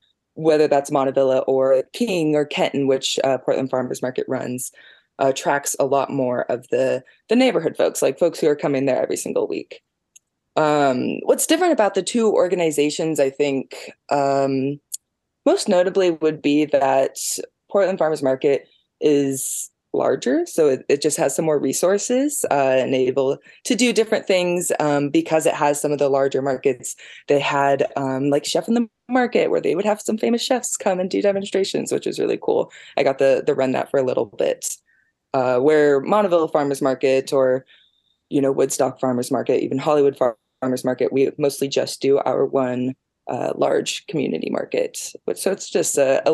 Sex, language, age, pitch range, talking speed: female, English, 20-39, 135-210 Hz, 180 wpm